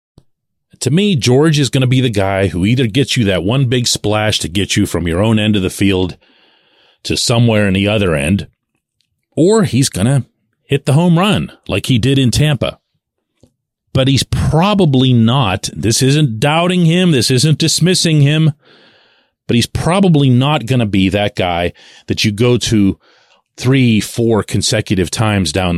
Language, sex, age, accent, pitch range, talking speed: English, male, 40-59, American, 100-135 Hz, 175 wpm